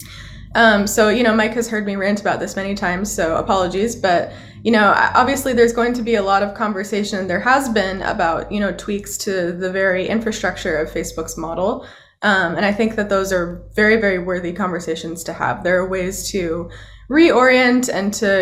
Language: Arabic